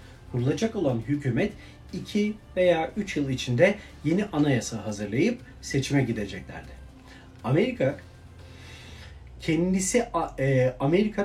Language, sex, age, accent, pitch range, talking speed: Turkish, male, 40-59, native, 120-175 Hz, 85 wpm